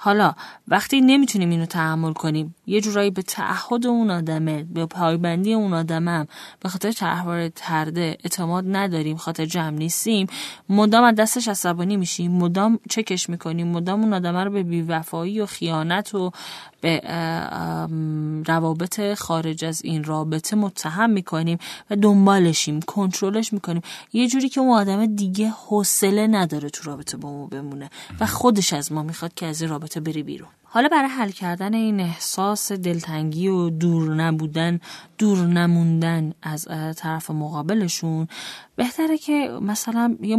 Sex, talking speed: female, 145 wpm